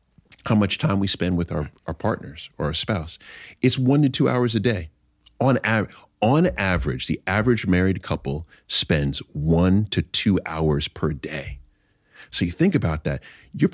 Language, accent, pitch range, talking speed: English, American, 90-115 Hz, 170 wpm